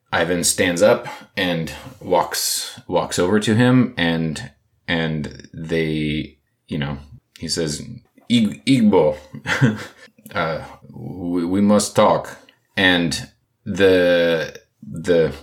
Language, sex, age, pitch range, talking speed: English, male, 30-49, 80-105 Hz, 100 wpm